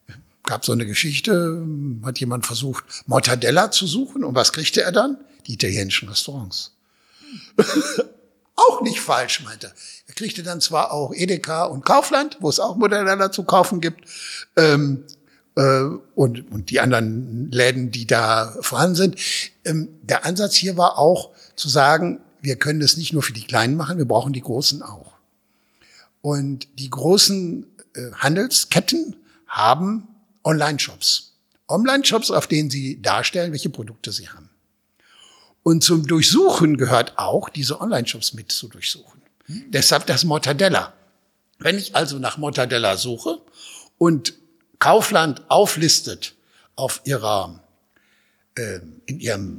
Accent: German